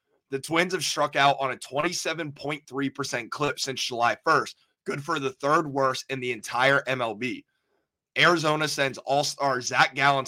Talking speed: 150 wpm